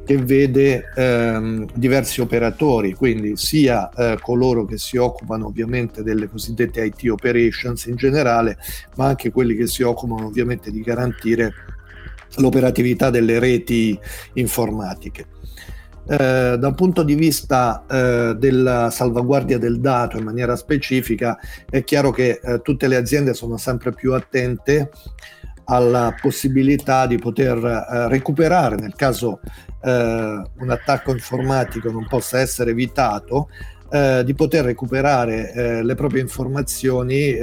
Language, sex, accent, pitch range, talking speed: Italian, male, native, 115-135 Hz, 120 wpm